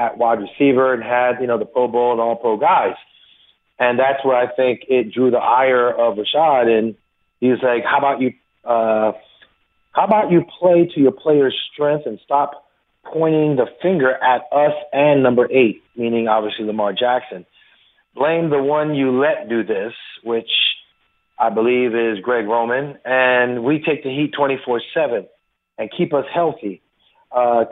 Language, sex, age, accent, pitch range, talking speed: English, male, 40-59, American, 120-150 Hz, 170 wpm